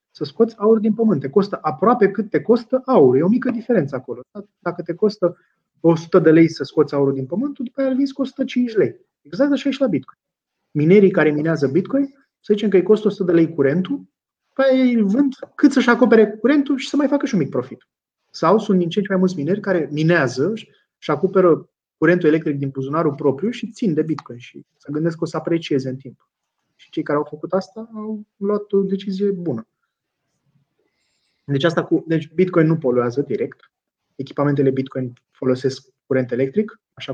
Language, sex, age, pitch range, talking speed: Romanian, male, 30-49, 150-210 Hz, 195 wpm